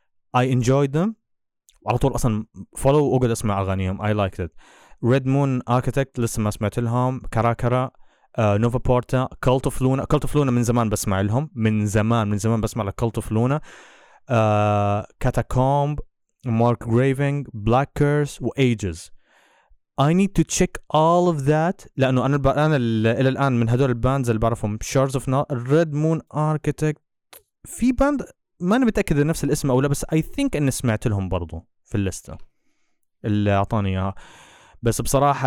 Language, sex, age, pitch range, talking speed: Arabic, male, 20-39, 110-140 Hz, 135 wpm